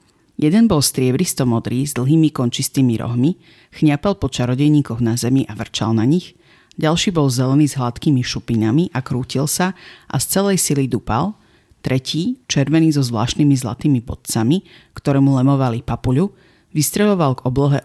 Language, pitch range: Slovak, 125-155 Hz